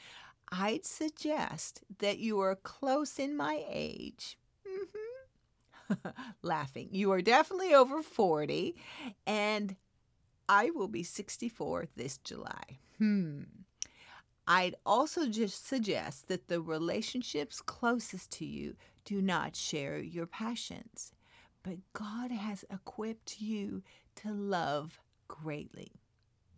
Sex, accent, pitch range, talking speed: female, American, 170-260 Hz, 105 wpm